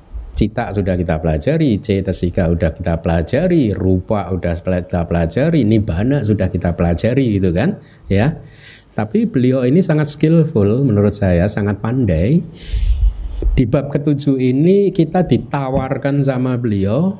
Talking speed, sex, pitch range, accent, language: 130 wpm, male, 95-140 Hz, native, Indonesian